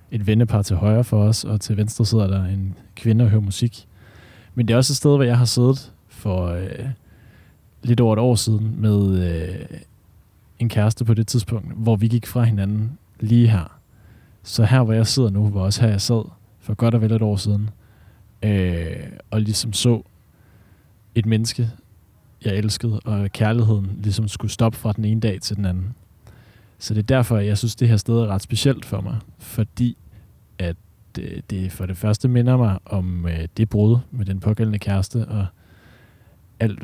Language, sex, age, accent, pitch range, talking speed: Danish, male, 20-39, native, 100-115 Hz, 190 wpm